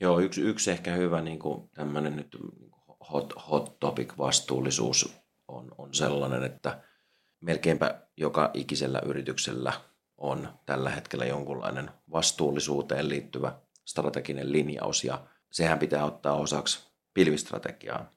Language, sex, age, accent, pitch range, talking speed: Finnish, male, 30-49, native, 70-80 Hz, 110 wpm